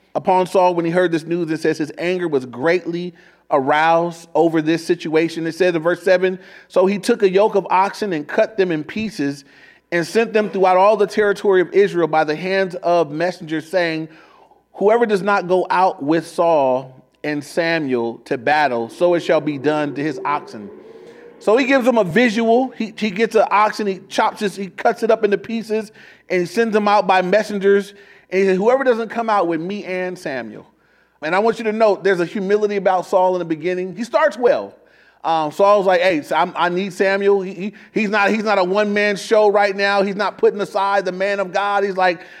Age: 30-49